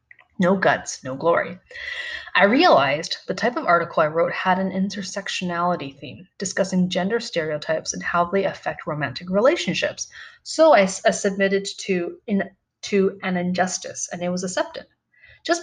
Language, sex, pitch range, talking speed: English, female, 170-210 Hz, 150 wpm